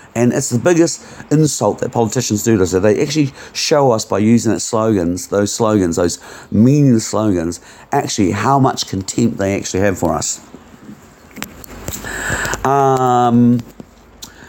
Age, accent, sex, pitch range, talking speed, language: 50-69, British, male, 110-140 Hz, 135 wpm, English